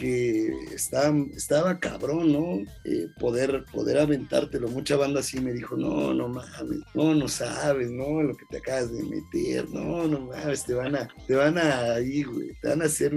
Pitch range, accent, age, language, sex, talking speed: 135-165 Hz, Mexican, 40-59, Spanish, male, 185 wpm